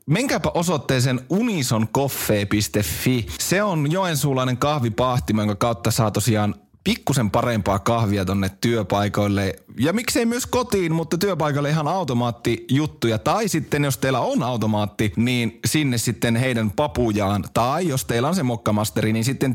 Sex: male